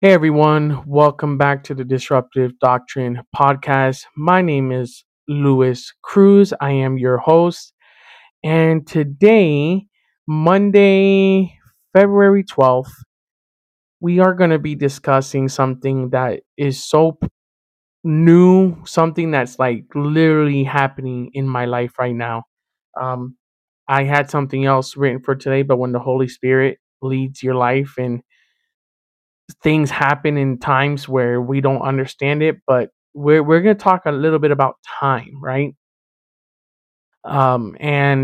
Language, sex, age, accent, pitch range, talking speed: English, male, 20-39, American, 130-160 Hz, 130 wpm